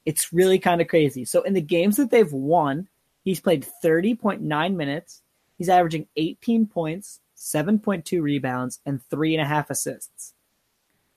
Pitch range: 140-180 Hz